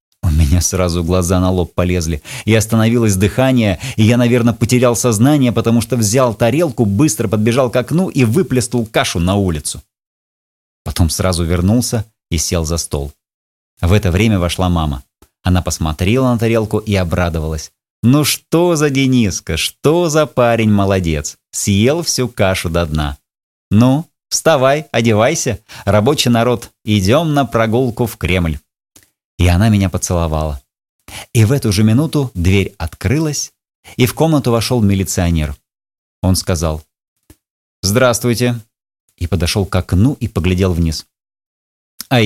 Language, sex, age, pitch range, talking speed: Russian, male, 30-49, 90-120 Hz, 135 wpm